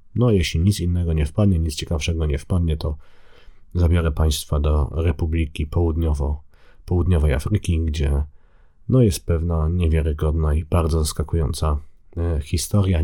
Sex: male